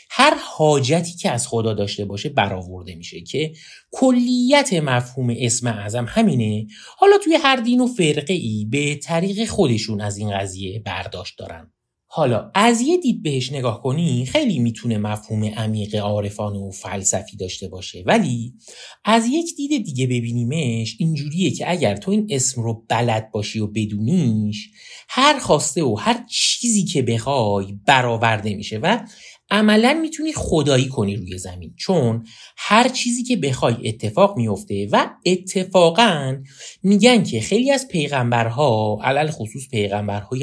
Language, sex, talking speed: Persian, male, 145 wpm